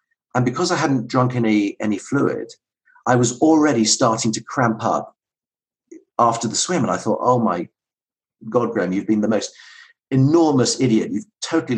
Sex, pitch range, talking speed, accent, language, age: male, 105-130 Hz, 170 wpm, British, English, 40-59